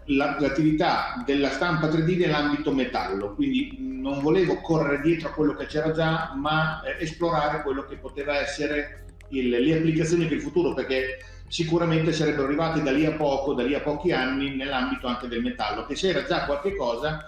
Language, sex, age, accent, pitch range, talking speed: Italian, male, 40-59, native, 130-165 Hz, 170 wpm